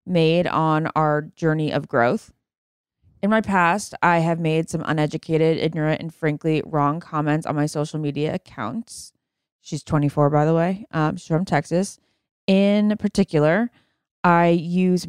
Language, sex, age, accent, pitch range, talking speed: English, female, 20-39, American, 155-185 Hz, 145 wpm